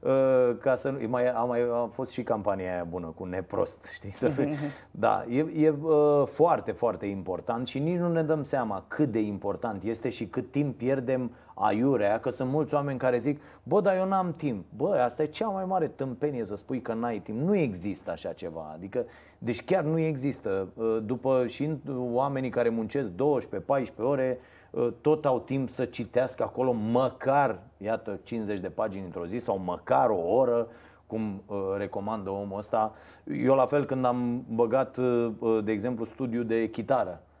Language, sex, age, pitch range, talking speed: Romanian, male, 30-49, 120-170 Hz, 170 wpm